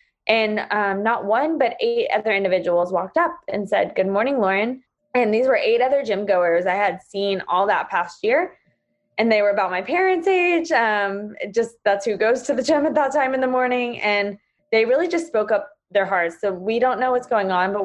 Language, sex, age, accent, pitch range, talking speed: English, female, 20-39, American, 185-230 Hz, 220 wpm